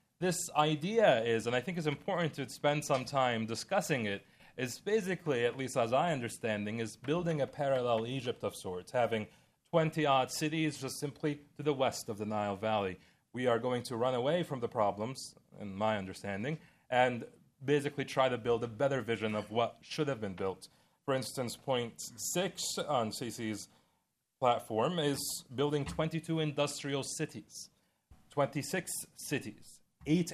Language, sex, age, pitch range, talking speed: English, male, 30-49, 110-150 Hz, 160 wpm